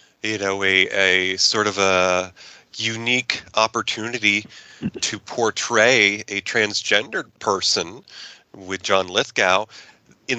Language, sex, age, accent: English, male, 30-49, American